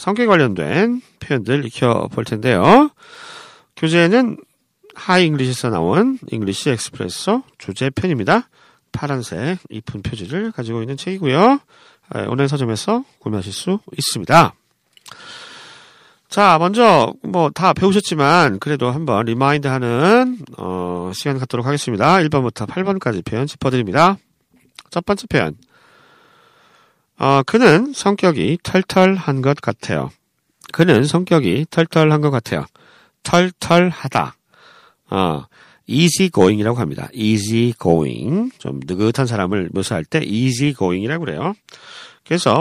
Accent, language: native, Korean